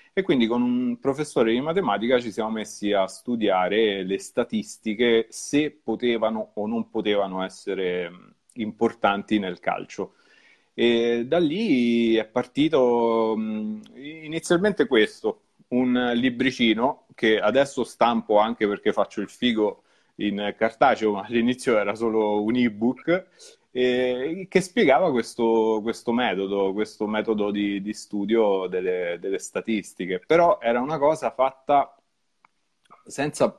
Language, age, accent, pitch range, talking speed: Italian, 30-49, native, 105-130 Hz, 120 wpm